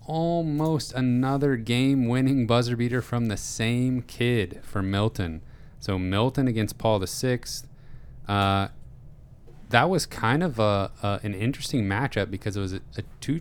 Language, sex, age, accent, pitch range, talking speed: English, male, 30-49, American, 95-125 Hz, 150 wpm